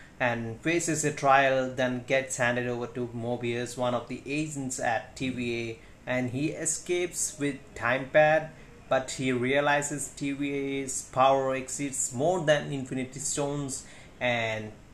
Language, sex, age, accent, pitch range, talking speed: Hindi, male, 30-49, native, 120-145 Hz, 135 wpm